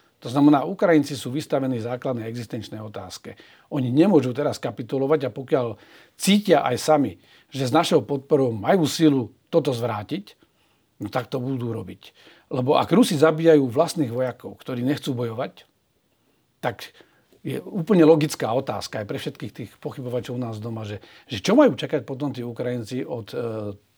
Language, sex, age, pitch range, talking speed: Slovak, male, 40-59, 125-150 Hz, 155 wpm